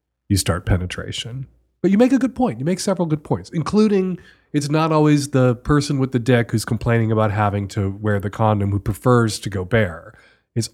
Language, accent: English, American